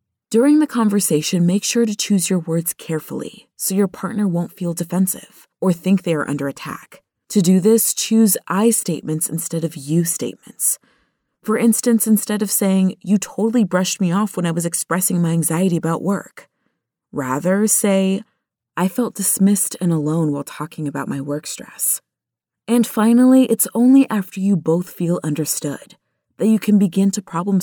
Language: English